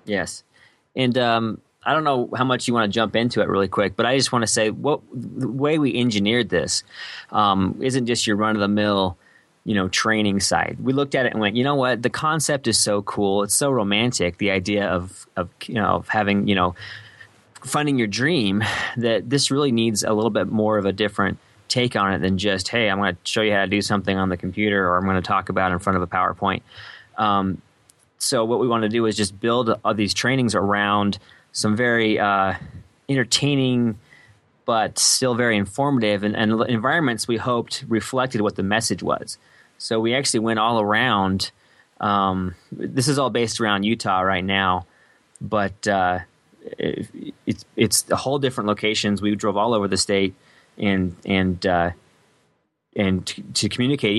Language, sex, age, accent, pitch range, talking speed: English, male, 20-39, American, 100-120 Hz, 200 wpm